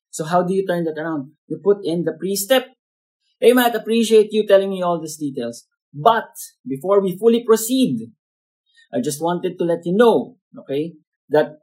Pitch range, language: 150-225 Hz, English